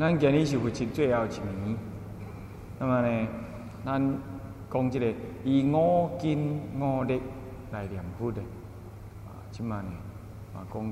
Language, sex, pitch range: Chinese, male, 105-120 Hz